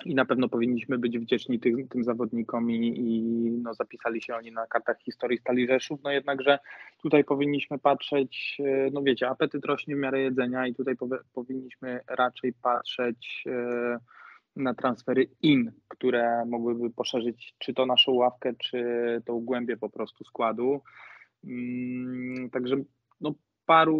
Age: 20-39